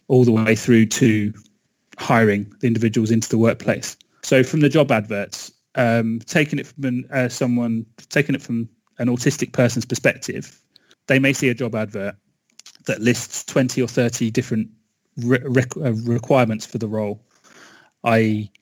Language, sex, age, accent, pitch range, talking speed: English, male, 30-49, British, 110-130 Hz, 150 wpm